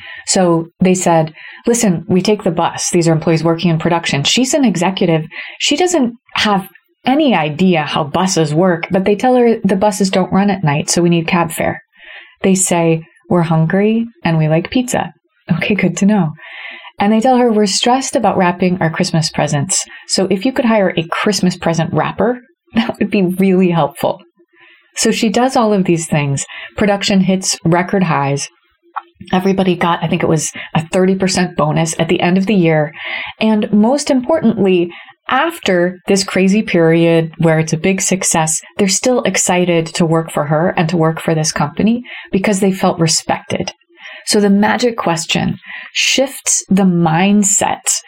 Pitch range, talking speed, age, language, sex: 170-215 Hz, 175 wpm, 30-49, English, female